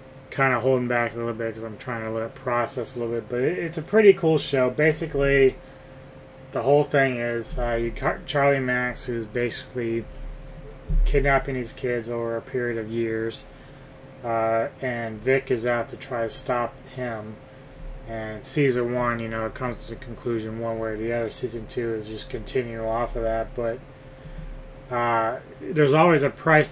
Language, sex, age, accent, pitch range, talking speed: English, male, 20-39, American, 115-135 Hz, 185 wpm